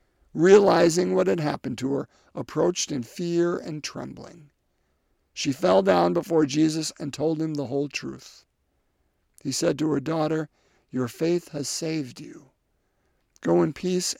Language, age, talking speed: English, 50-69, 150 wpm